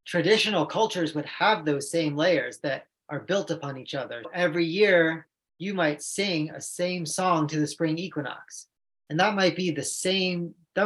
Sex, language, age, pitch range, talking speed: male, English, 30-49, 140-175 Hz, 175 wpm